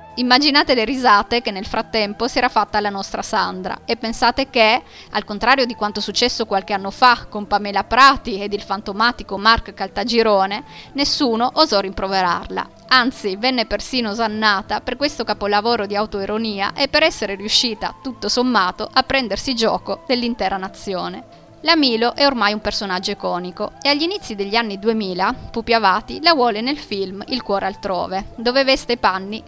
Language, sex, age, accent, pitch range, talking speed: Italian, female, 20-39, native, 200-250 Hz, 160 wpm